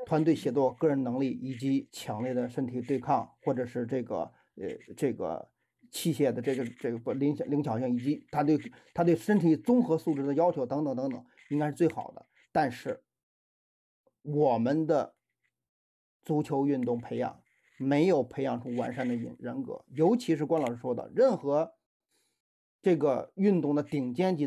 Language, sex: Chinese, male